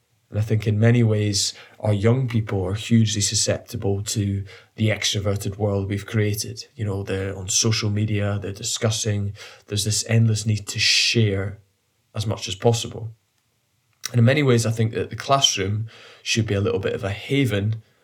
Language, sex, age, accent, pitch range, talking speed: English, male, 20-39, British, 100-115 Hz, 175 wpm